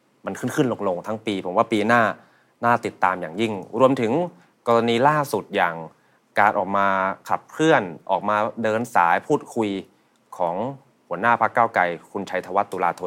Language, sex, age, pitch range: Thai, male, 20-39, 100-120 Hz